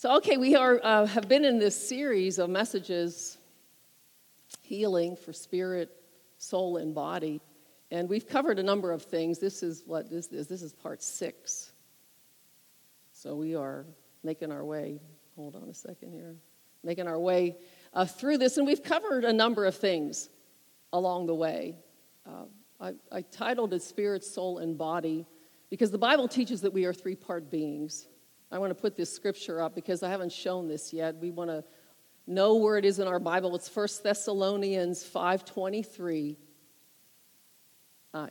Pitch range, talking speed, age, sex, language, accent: 165-205 Hz, 170 wpm, 50-69, female, English, American